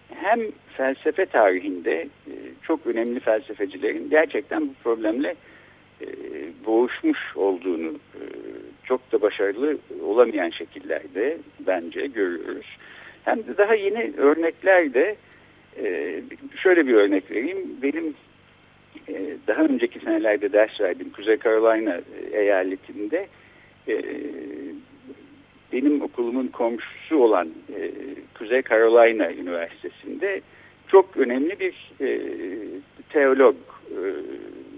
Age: 60-79